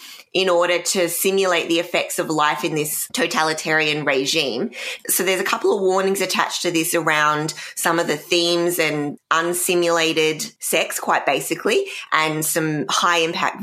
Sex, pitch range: female, 155-180 Hz